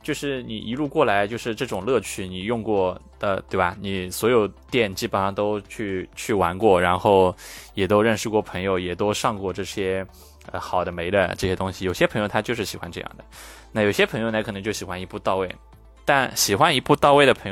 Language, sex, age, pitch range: Chinese, male, 20-39, 90-110 Hz